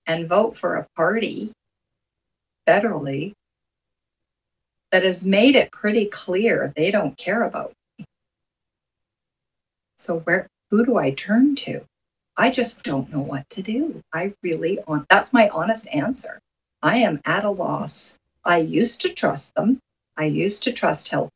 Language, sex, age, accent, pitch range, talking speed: English, female, 50-69, American, 150-200 Hz, 150 wpm